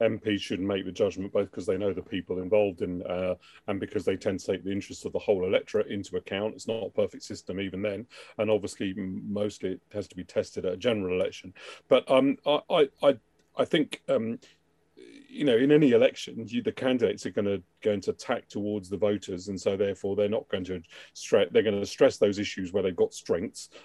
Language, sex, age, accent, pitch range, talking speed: English, male, 40-59, British, 100-155 Hz, 220 wpm